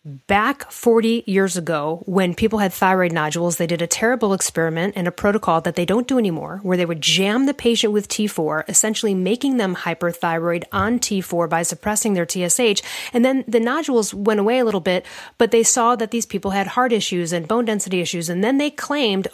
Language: English